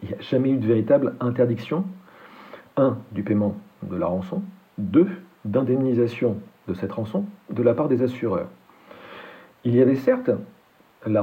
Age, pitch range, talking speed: 50-69, 110-135 Hz, 155 wpm